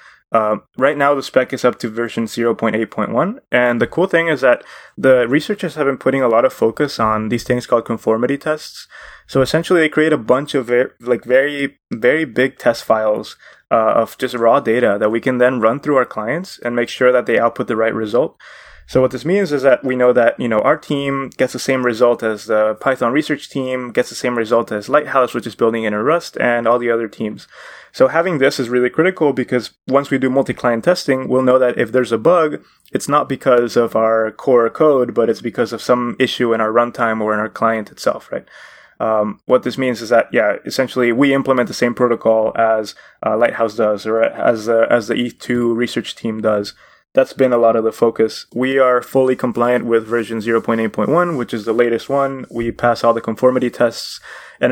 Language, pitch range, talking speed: English, 115-130 Hz, 220 wpm